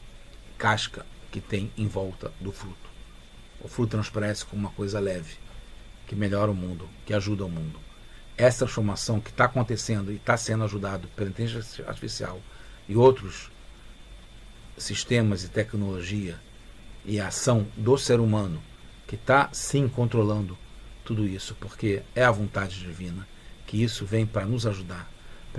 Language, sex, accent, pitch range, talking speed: English, male, Brazilian, 100-115 Hz, 150 wpm